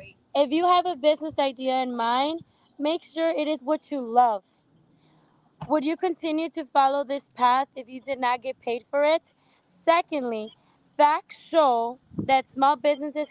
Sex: female